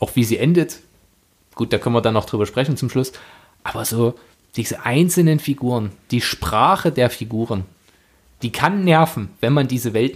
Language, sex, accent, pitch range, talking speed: German, male, German, 115-160 Hz, 175 wpm